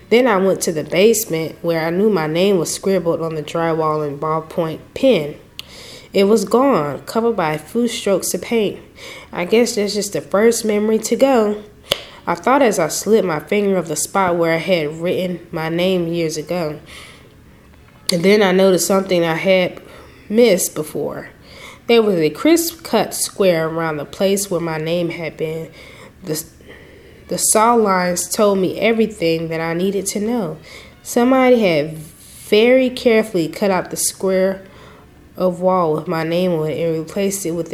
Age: 20-39